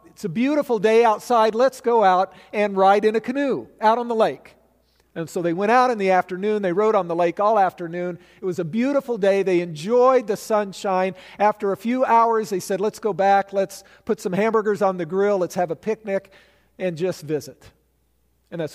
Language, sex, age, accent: English, male, 50-69, American